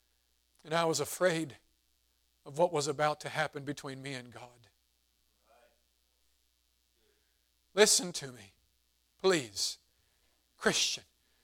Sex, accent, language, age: male, American, English, 50-69